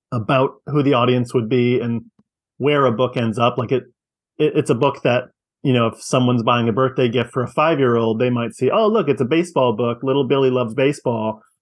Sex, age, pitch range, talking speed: male, 30-49, 115-130 Hz, 220 wpm